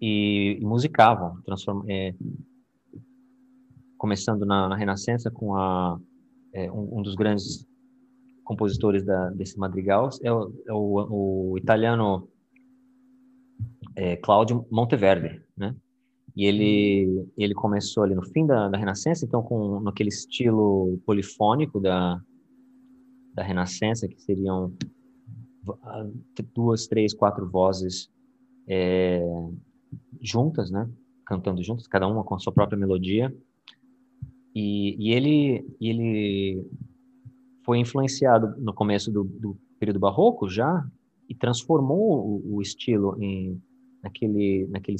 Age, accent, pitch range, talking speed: 20-39, Brazilian, 95-130 Hz, 115 wpm